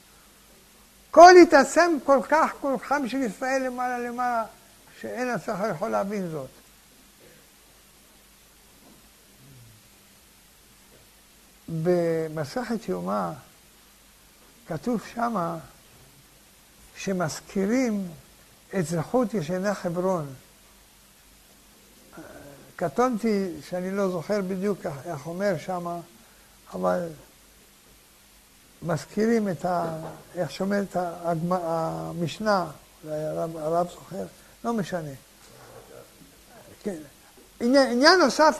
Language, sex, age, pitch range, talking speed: Hebrew, male, 60-79, 175-245 Hz, 70 wpm